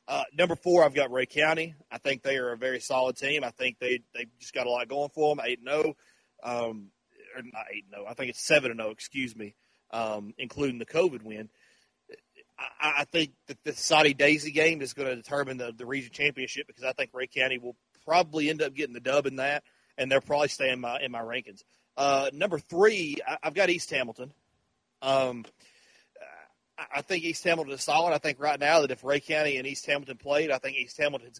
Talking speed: 220 wpm